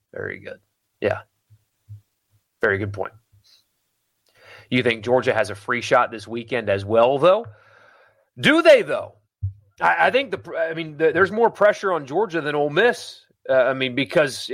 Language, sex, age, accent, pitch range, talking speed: English, male, 30-49, American, 110-165 Hz, 165 wpm